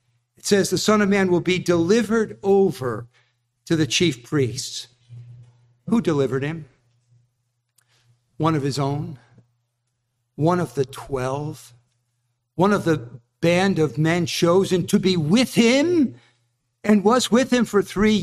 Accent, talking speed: American, 140 wpm